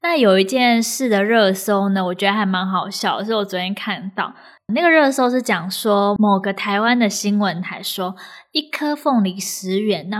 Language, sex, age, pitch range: Chinese, female, 10-29, 195-270 Hz